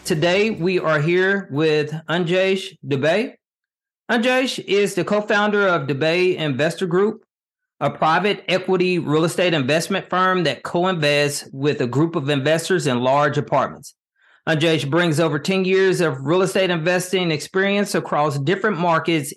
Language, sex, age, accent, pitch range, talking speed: English, male, 40-59, American, 155-195 Hz, 140 wpm